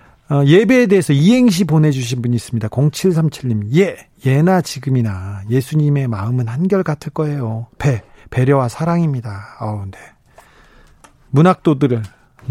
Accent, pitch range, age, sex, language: native, 130-175 Hz, 40-59, male, Korean